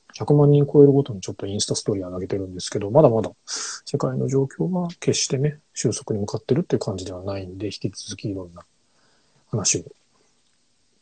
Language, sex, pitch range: Japanese, male, 105-145 Hz